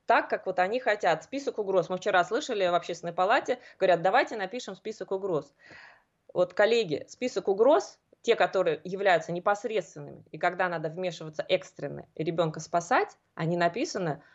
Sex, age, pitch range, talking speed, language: female, 20-39, 170-240 Hz, 145 wpm, Russian